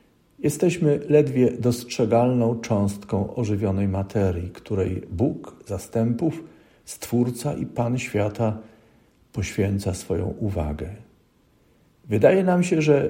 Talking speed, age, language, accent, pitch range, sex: 90 wpm, 50-69, Polish, native, 100-130 Hz, male